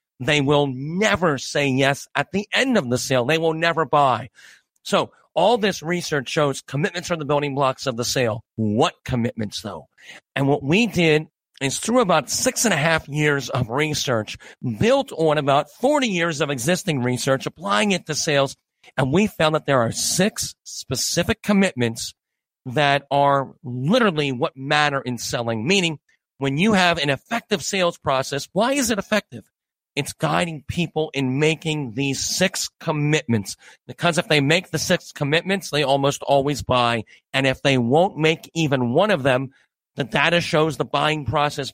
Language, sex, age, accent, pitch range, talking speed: English, male, 40-59, American, 130-170 Hz, 170 wpm